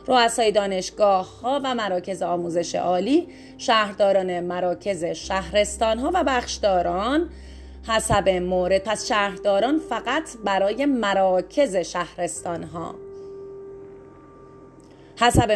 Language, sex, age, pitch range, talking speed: Persian, female, 30-49, 185-245 Hz, 85 wpm